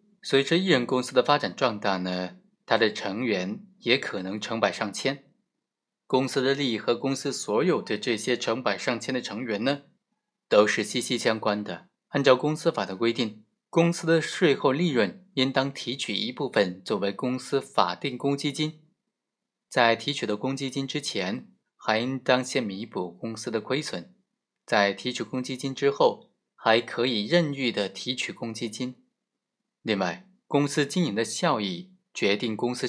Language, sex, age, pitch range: Chinese, male, 20-39, 115-165 Hz